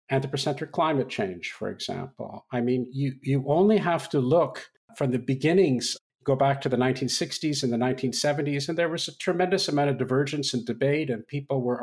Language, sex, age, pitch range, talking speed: English, male, 50-69, 130-170 Hz, 190 wpm